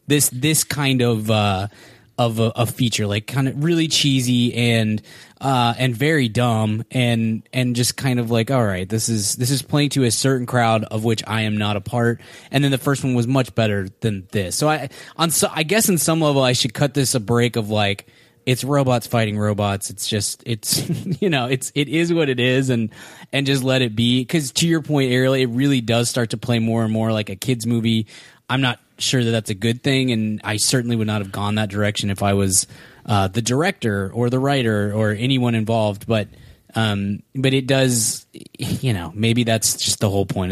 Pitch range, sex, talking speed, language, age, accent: 110-135 Hz, male, 225 wpm, English, 20-39, American